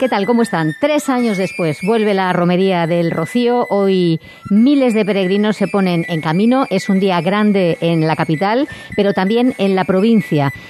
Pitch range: 170-220 Hz